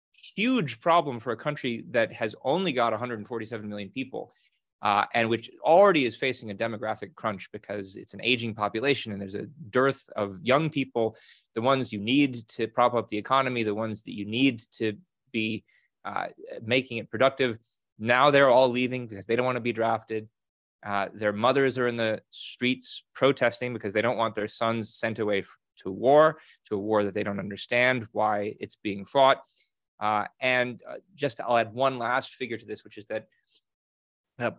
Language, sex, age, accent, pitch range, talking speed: English, male, 30-49, American, 110-135 Hz, 185 wpm